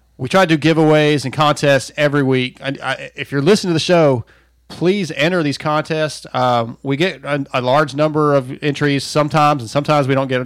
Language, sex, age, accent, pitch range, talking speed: English, male, 30-49, American, 125-150 Hz, 195 wpm